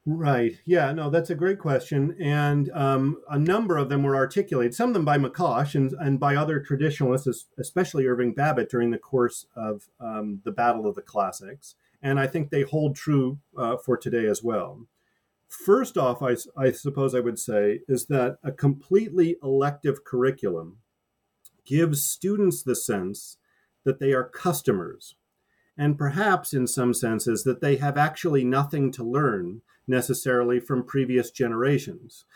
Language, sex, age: English, male, 40-59